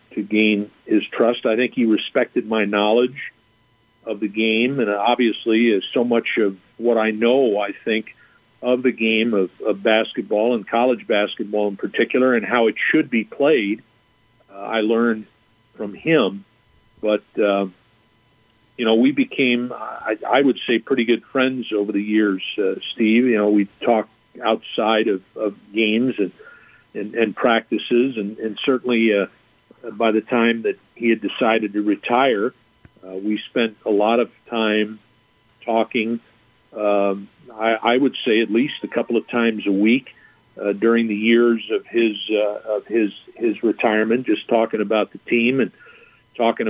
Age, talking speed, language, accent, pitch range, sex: 50-69, 165 wpm, English, American, 105-120 Hz, male